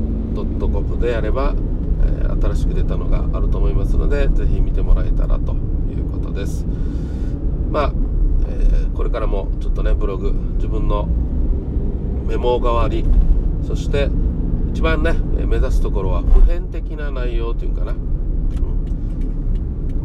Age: 40-59